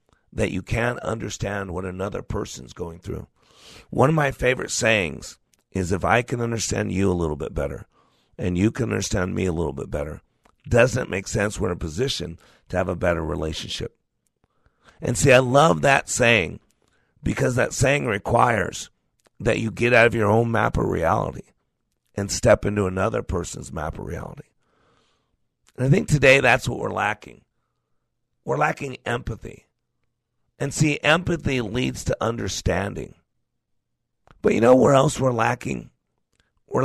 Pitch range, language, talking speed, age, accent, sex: 95-130 Hz, English, 160 wpm, 50-69, American, male